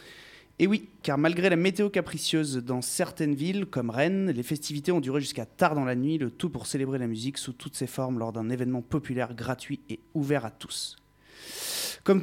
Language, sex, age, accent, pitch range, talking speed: French, male, 30-49, French, 125-165 Hz, 200 wpm